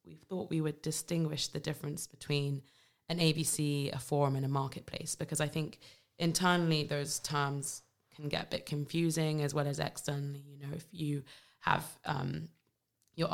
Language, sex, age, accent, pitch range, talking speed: English, female, 20-39, British, 140-160 Hz, 160 wpm